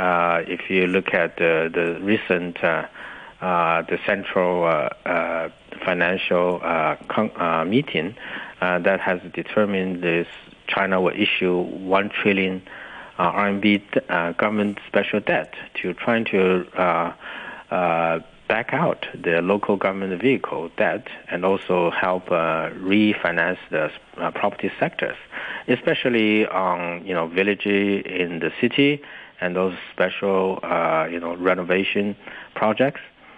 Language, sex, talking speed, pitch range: English, male, 135 wpm, 90-105 Hz